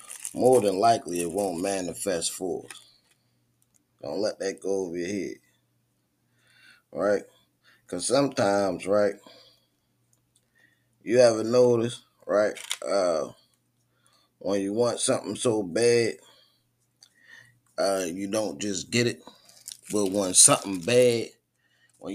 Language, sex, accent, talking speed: English, male, American, 110 wpm